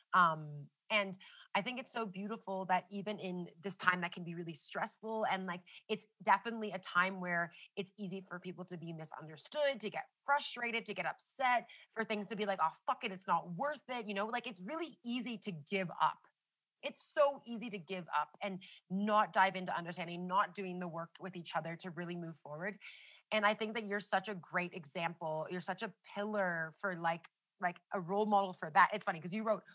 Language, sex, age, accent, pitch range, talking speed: English, female, 30-49, American, 180-220 Hz, 215 wpm